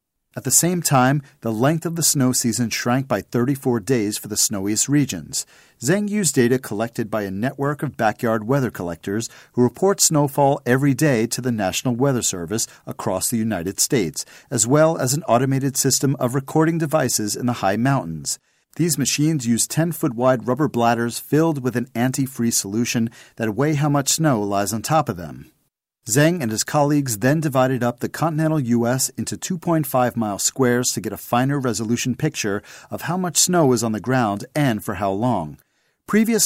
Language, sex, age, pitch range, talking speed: English, male, 40-59, 110-145 Hz, 180 wpm